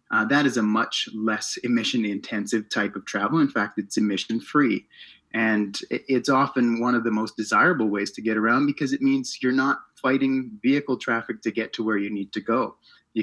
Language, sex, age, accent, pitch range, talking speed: English, male, 30-49, American, 105-125 Hz, 195 wpm